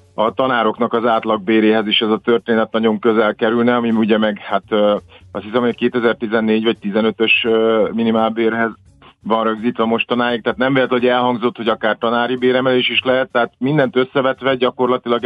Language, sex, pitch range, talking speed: Hungarian, male, 110-125 Hz, 160 wpm